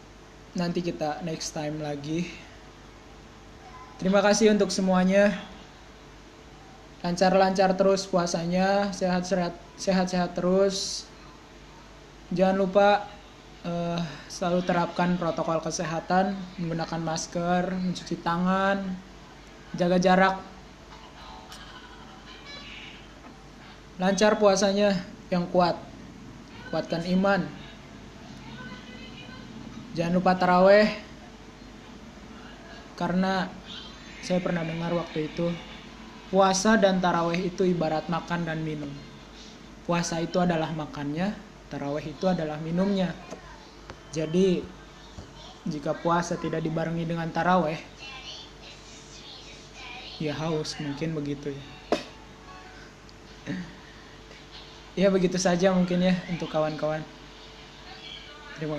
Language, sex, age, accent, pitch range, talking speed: Indonesian, male, 20-39, native, 160-190 Hz, 80 wpm